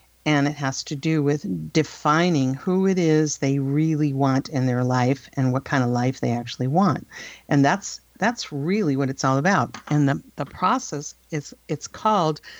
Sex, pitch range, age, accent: female, 135-165 Hz, 50-69, American